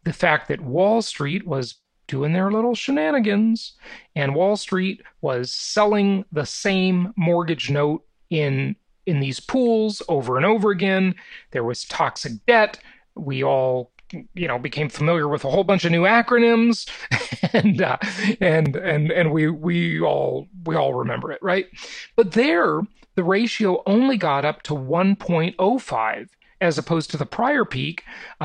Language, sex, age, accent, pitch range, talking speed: English, male, 40-59, American, 155-215 Hz, 155 wpm